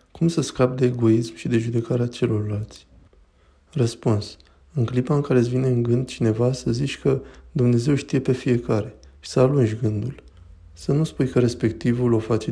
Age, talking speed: 20-39, 175 wpm